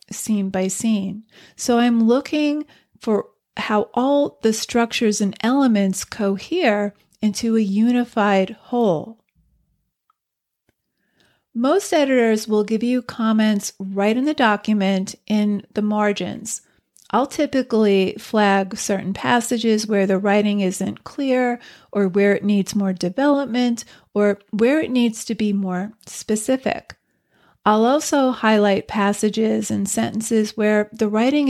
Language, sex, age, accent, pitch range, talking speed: English, female, 40-59, American, 200-240 Hz, 120 wpm